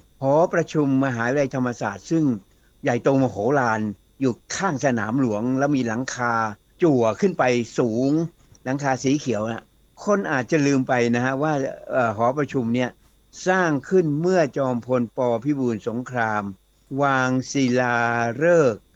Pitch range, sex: 120-150 Hz, male